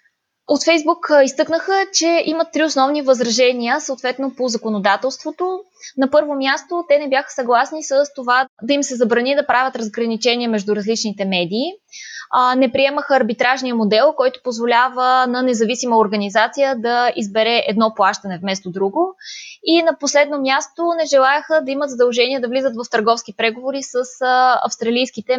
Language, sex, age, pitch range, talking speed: Bulgarian, female, 20-39, 230-285 Hz, 145 wpm